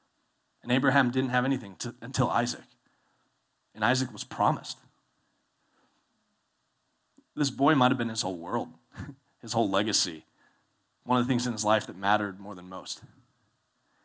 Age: 30-49